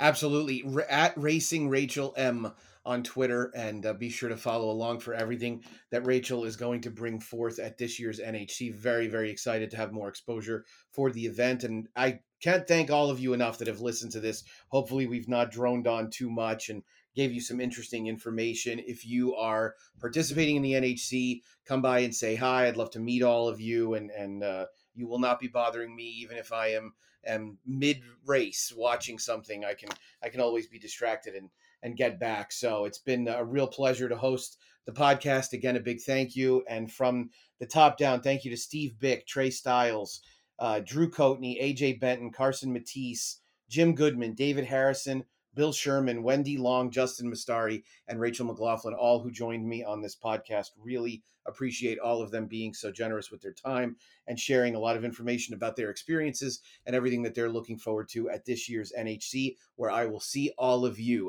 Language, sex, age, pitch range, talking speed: English, male, 30-49, 115-130 Hz, 200 wpm